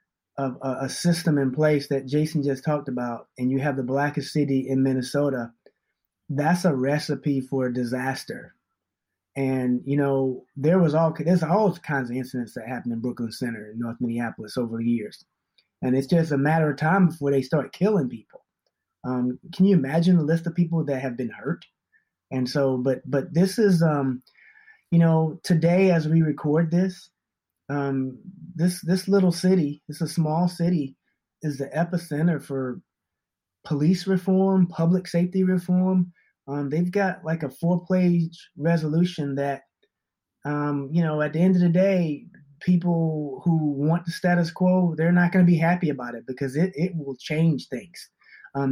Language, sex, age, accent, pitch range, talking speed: English, male, 20-39, American, 135-175 Hz, 170 wpm